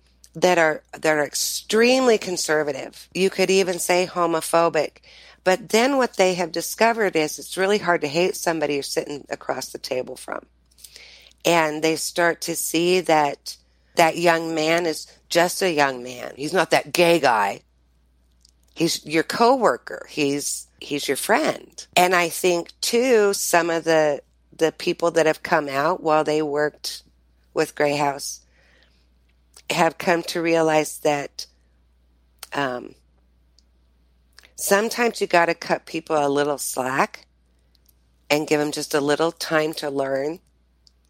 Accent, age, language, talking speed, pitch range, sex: American, 50-69, English, 145 wpm, 130-170 Hz, female